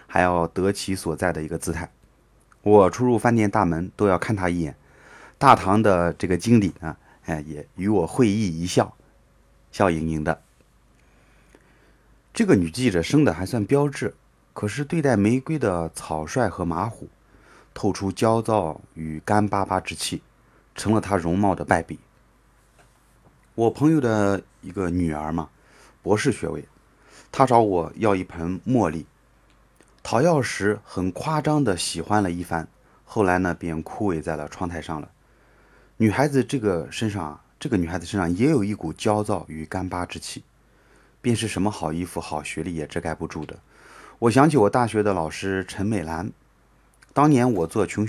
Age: 30-49